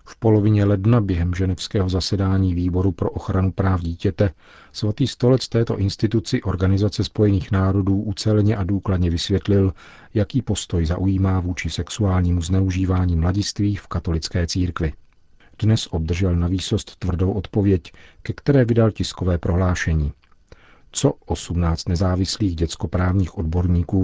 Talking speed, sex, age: 120 wpm, male, 50-69